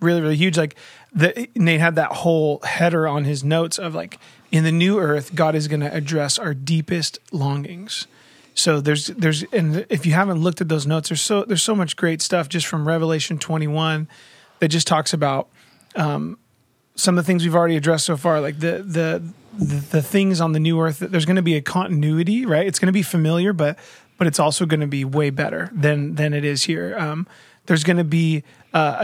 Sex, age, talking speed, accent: male, 30-49, 215 wpm, American